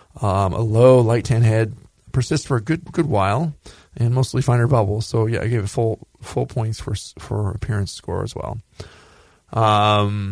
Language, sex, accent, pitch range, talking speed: English, male, American, 100-125 Hz, 180 wpm